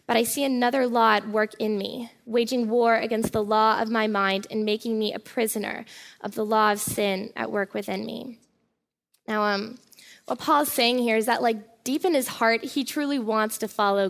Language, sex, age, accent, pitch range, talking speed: English, female, 10-29, American, 210-235 Hz, 210 wpm